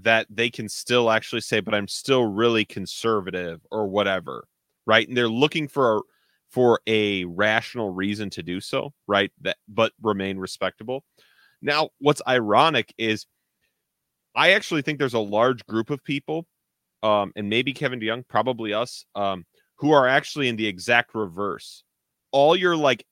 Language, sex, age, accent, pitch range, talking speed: English, male, 30-49, American, 105-130 Hz, 160 wpm